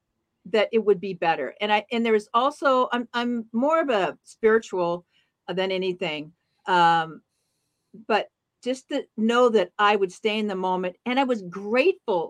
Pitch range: 185-255 Hz